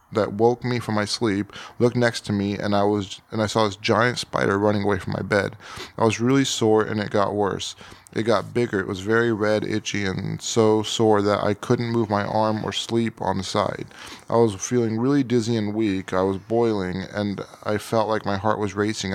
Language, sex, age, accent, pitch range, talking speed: English, male, 20-39, American, 100-115 Hz, 225 wpm